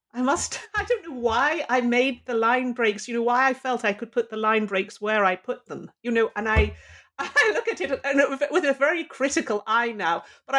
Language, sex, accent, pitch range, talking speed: English, female, British, 180-245 Hz, 230 wpm